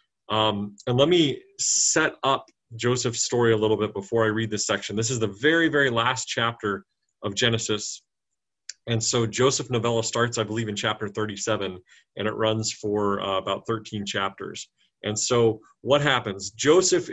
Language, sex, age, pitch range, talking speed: English, male, 30-49, 105-130 Hz, 170 wpm